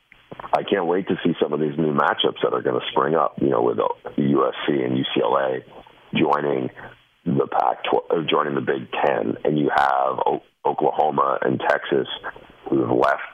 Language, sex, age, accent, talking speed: English, male, 50-69, American, 170 wpm